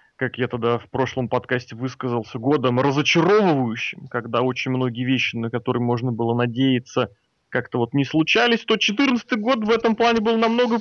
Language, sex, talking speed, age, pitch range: Russian, male, 165 wpm, 30-49, 120-155 Hz